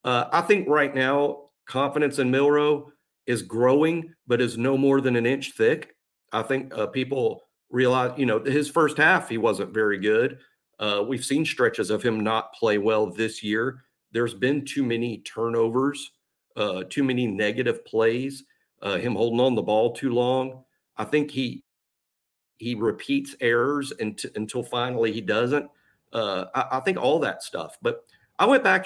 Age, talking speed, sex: 50-69, 175 wpm, male